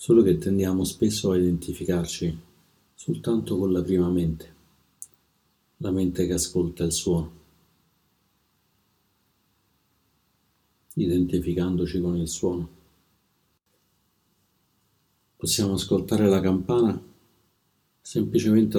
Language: Italian